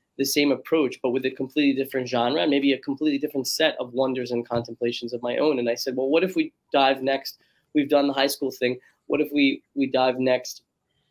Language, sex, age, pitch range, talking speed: English, male, 20-39, 120-140 Hz, 225 wpm